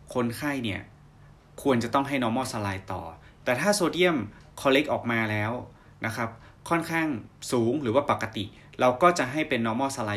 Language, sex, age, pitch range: Thai, male, 20-39, 105-140 Hz